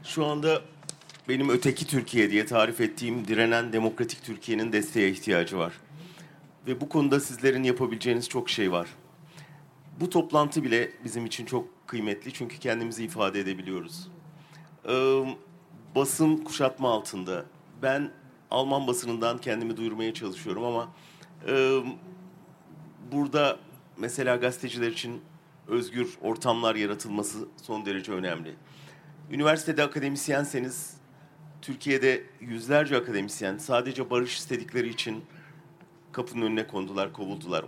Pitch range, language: 115-155 Hz, German